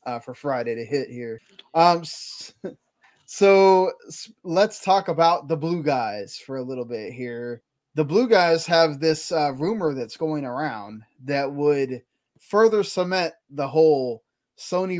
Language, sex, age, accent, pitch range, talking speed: English, male, 20-39, American, 135-170 Hz, 150 wpm